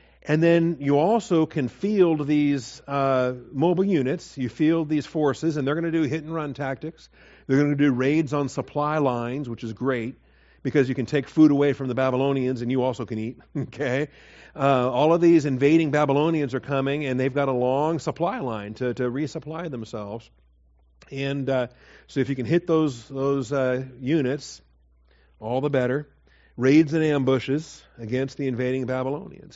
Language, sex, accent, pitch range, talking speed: English, male, American, 125-150 Hz, 175 wpm